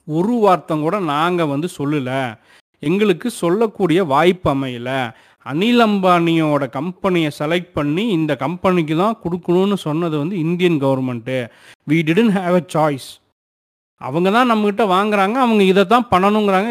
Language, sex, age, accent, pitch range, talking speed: Tamil, male, 30-49, native, 150-200 Hz, 130 wpm